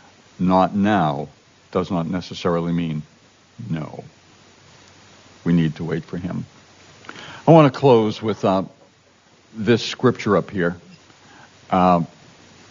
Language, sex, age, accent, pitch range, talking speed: English, male, 60-79, American, 90-120 Hz, 115 wpm